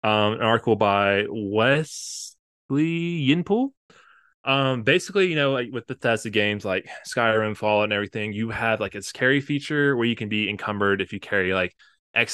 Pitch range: 105-135 Hz